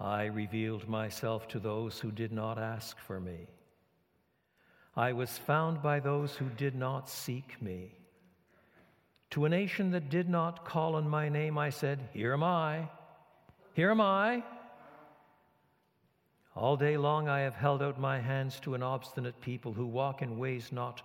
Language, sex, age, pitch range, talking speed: English, male, 60-79, 125-175 Hz, 165 wpm